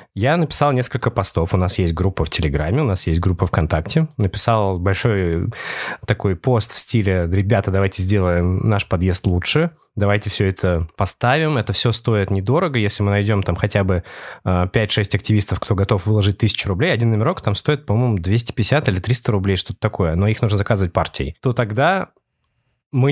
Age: 20-39